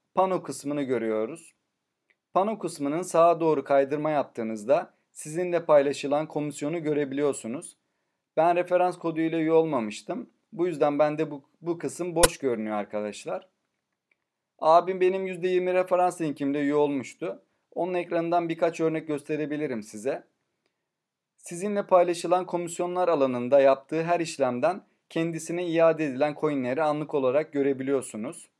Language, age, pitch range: Turkish, 30-49, 140-170 Hz